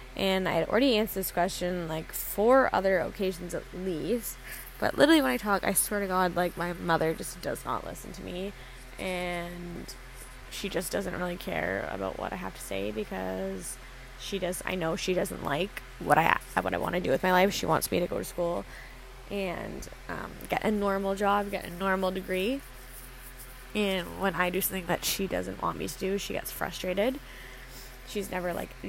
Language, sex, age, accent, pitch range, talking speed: English, female, 10-29, American, 170-200 Hz, 200 wpm